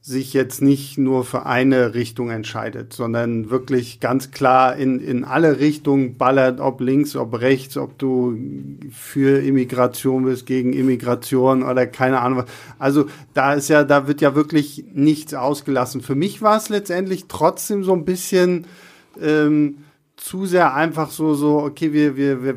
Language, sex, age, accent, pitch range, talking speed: German, male, 50-69, German, 130-160 Hz, 160 wpm